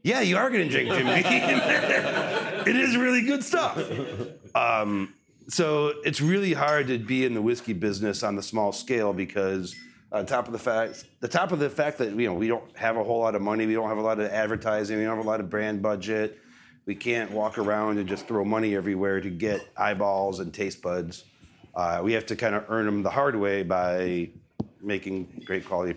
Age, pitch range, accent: 40-59, 100-130 Hz, American